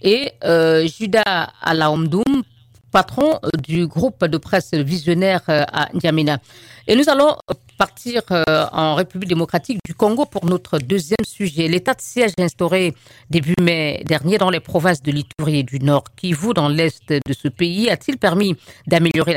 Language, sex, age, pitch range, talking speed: French, female, 50-69, 150-190 Hz, 155 wpm